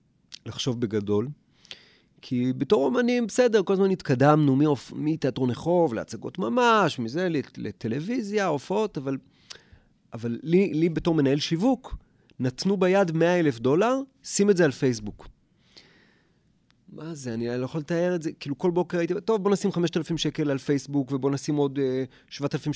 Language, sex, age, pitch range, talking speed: Hebrew, male, 30-49, 130-180 Hz, 155 wpm